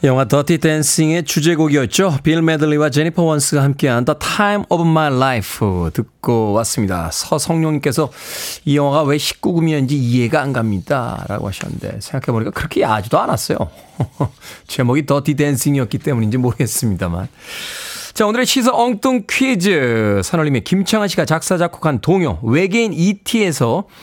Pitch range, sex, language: 120-175 Hz, male, Korean